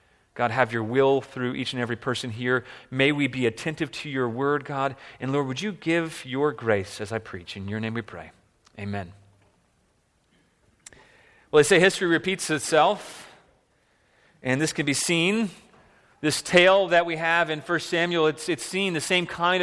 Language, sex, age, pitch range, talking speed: English, male, 30-49, 130-175 Hz, 180 wpm